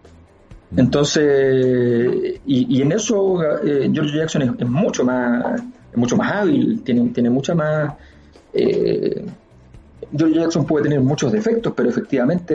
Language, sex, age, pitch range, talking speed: Spanish, male, 40-59, 130-190 Hz, 140 wpm